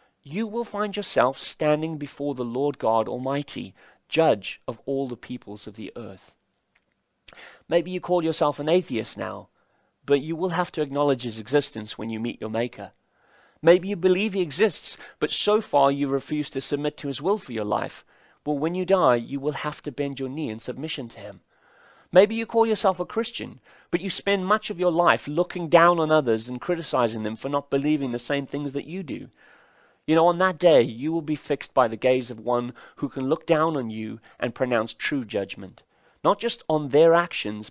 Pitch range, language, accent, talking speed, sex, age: 125-175 Hz, English, British, 205 wpm, male, 30-49